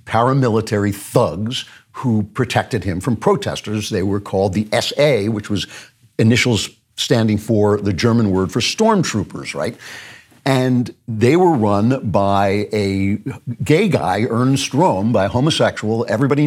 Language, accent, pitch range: English, American, 100-125 Hz